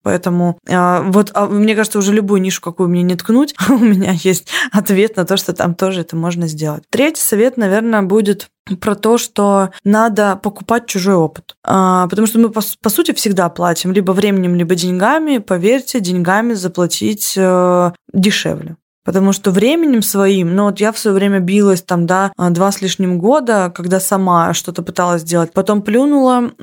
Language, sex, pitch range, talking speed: Russian, female, 185-210 Hz, 165 wpm